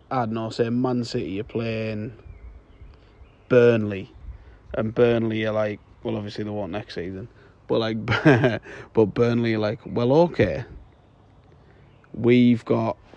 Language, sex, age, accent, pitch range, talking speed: English, male, 20-39, British, 105-125 Hz, 130 wpm